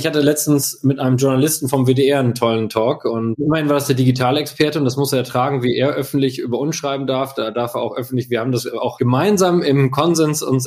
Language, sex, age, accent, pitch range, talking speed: German, male, 20-39, German, 125-155 Hz, 235 wpm